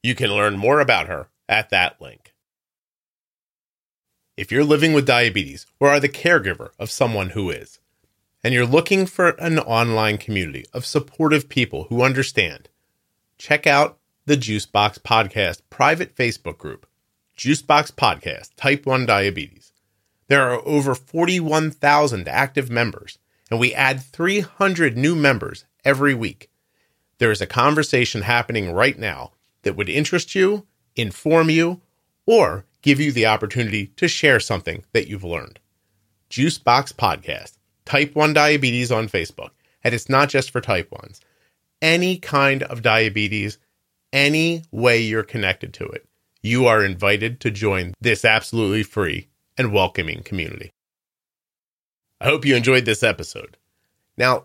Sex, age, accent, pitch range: male, 30-49, American, 105-145 Hz